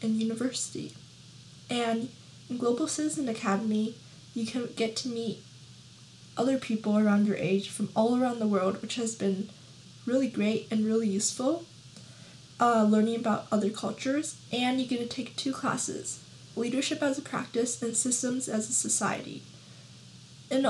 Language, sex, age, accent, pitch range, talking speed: English, female, 10-29, American, 215-255 Hz, 150 wpm